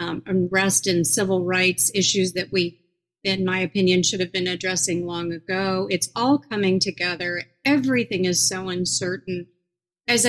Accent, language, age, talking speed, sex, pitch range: American, English, 40-59, 150 wpm, female, 185-235 Hz